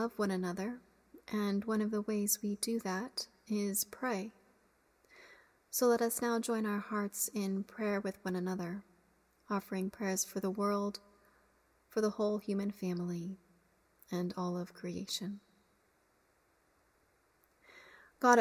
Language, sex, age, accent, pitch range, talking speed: English, female, 30-49, American, 200-230 Hz, 130 wpm